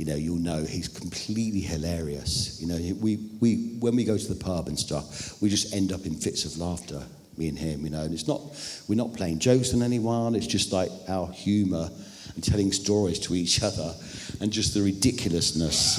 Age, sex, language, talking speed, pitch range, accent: 50-69, male, English, 210 wpm, 90-125 Hz, British